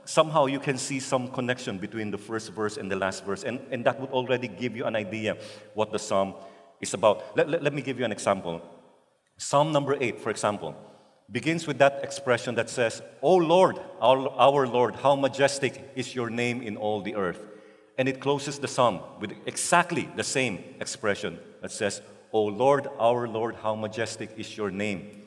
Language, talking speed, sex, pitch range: English, 195 wpm, male, 110-135 Hz